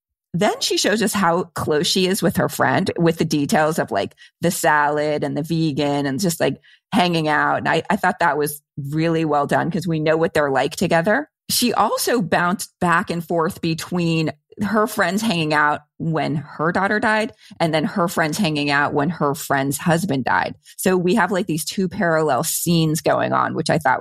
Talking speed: 200 wpm